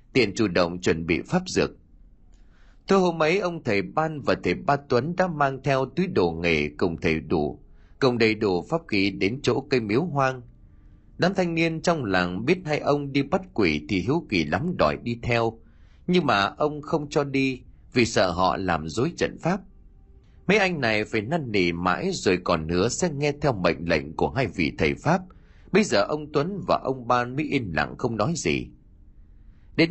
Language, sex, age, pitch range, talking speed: Vietnamese, male, 30-49, 95-155 Hz, 205 wpm